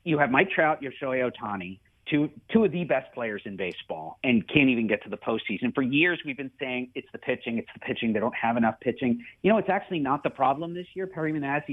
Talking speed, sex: 245 wpm, male